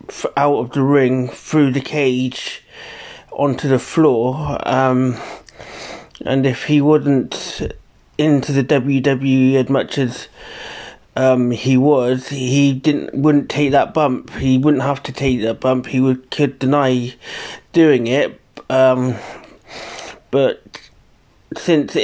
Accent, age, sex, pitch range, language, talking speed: British, 30-49, male, 125-140 Hz, English, 125 wpm